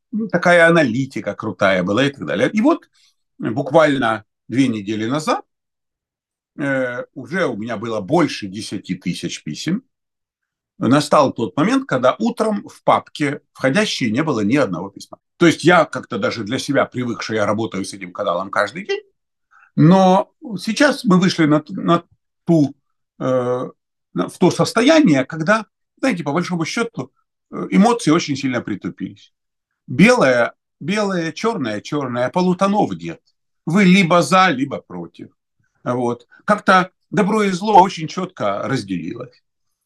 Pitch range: 135-210 Hz